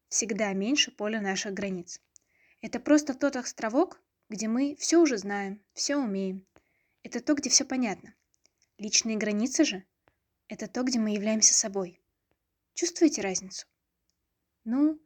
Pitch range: 210-275 Hz